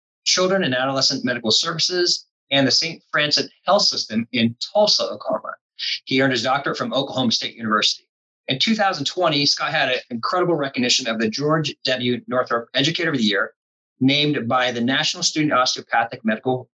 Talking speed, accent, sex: 160 wpm, American, male